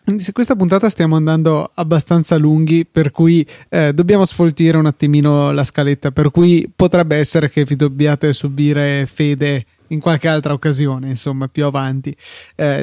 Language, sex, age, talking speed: Italian, male, 20-39, 150 wpm